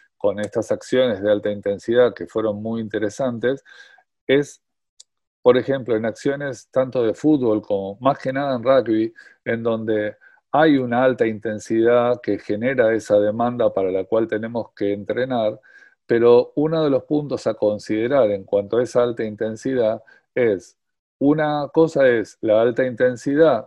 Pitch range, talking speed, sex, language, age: 110-145 Hz, 150 wpm, male, Spanish, 40-59